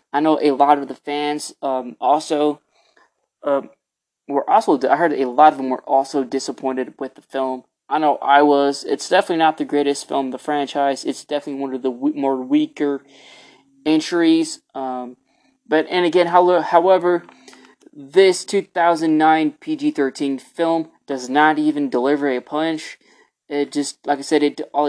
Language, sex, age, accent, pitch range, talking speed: English, male, 20-39, American, 135-160 Hz, 165 wpm